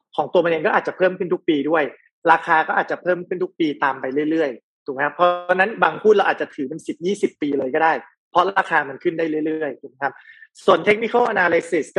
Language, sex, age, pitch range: Thai, male, 30-49, 170-220 Hz